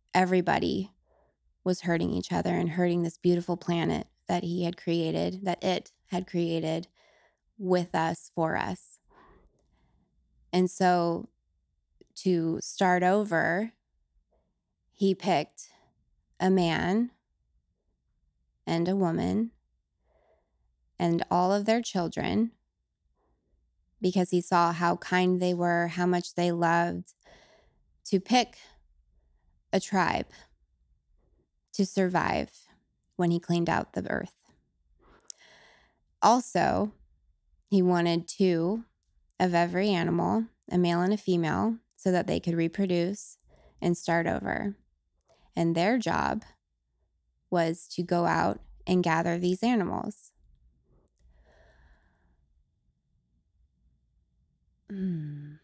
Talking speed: 100 wpm